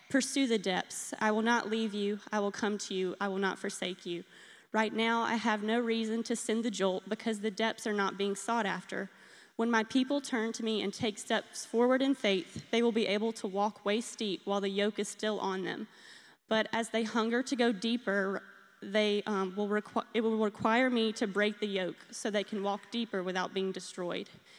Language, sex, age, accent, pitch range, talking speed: Russian, female, 20-39, American, 200-225 Hz, 220 wpm